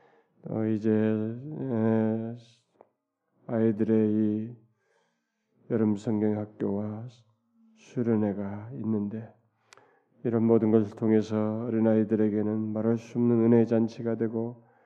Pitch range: 110-120 Hz